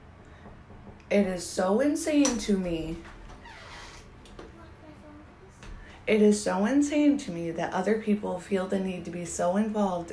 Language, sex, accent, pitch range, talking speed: English, female, American, 170-210 Hz, 130 wpm